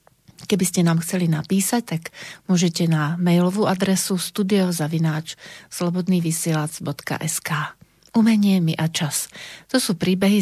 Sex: female